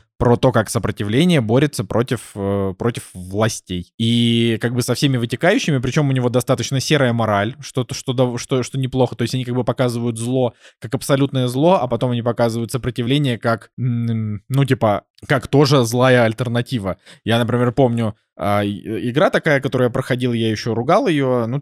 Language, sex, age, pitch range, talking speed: Russian, male, 20-39, 115-135 Hz, 165 wpm